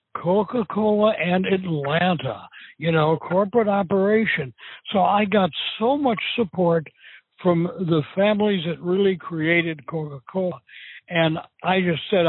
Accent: American